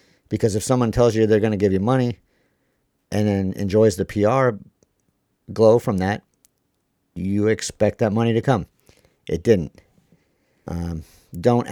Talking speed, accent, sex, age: 150 wpm, American, male, 50-69